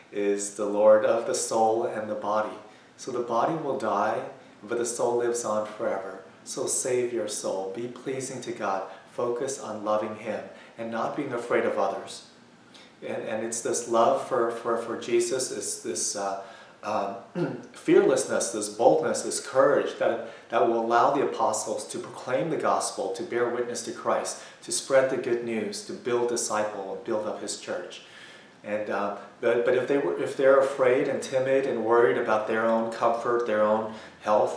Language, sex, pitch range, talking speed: English, male, 110-130 Hz, 180 wpm